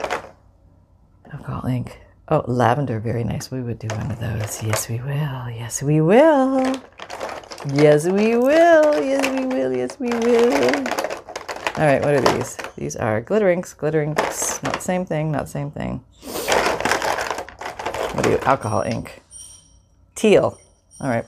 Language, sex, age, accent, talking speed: English, female, 40-59, American, 150 wpm